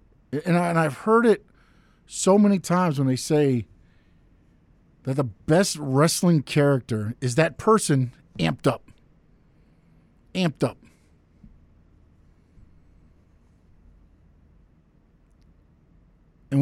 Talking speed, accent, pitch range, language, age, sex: 85 wpm, American, 105-160 Hz, English, 50-69, male